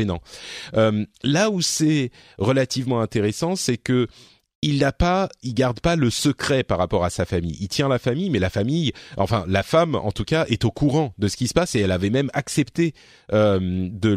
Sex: male